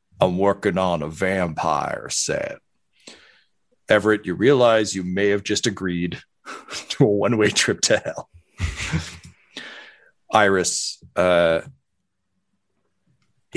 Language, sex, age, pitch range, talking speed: English, male, 40-59, 90-105 Hz, 95 wpm